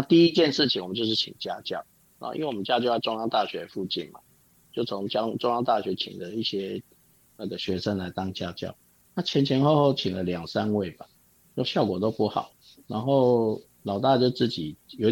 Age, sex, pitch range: 50-69, male, 95-125 Hz